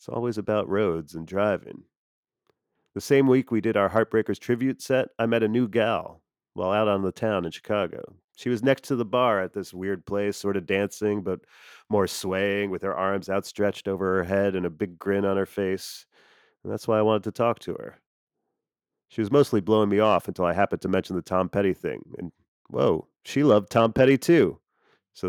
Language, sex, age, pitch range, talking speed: English, male, 30-49, 95-110 Hz, 210 wpm